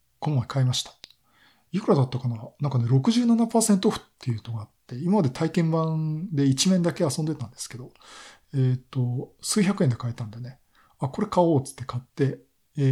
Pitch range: 125-160 Hz